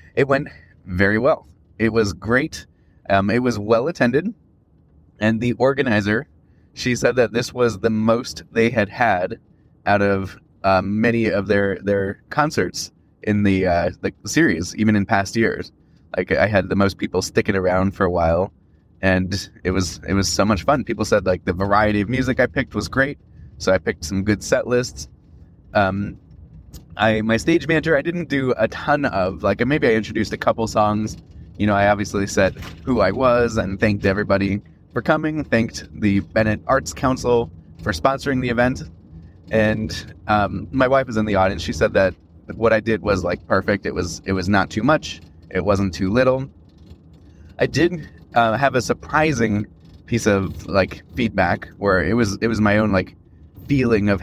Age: 20-39